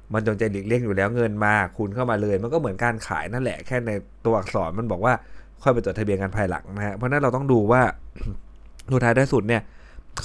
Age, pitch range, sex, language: 20-39, 100-125 Hz, male, Thai